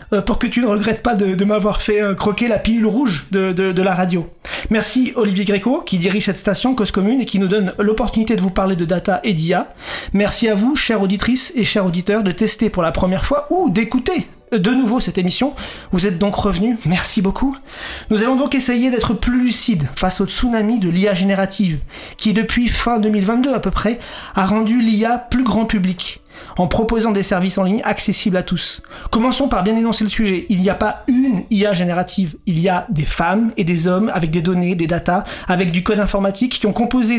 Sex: male